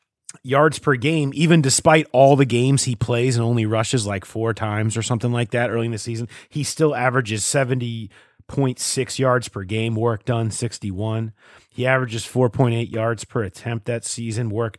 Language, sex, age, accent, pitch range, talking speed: English, male, 30-49, American, 110-130 Hz, 175 wpm